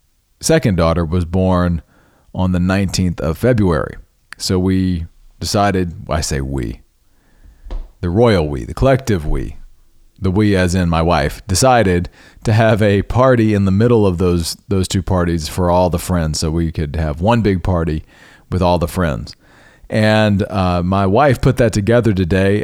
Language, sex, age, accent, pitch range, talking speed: English, male, 40-59, American, 85-105 Hz, 165 wpm